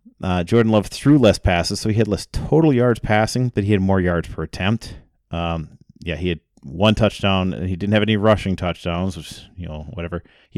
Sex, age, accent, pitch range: male, 30-49, American, 90-110 Hz